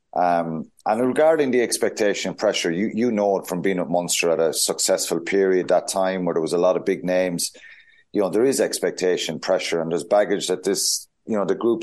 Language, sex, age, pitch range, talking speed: English, male, 30-49, 90-115 Hz, 220 wpm